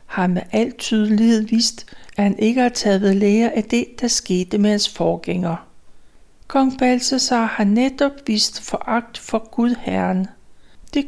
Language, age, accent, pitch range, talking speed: Danish, 60-79, native, 200-255 Hz, 150 wpm